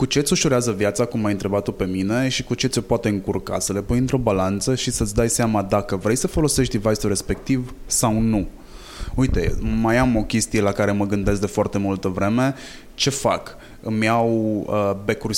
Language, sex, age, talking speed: Romanian, male, 20-39, 205 wpm